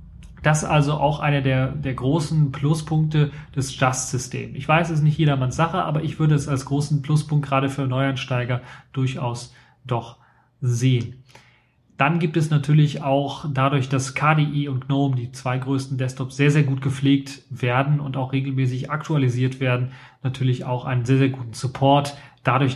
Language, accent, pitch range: German, German, 130-150 Hz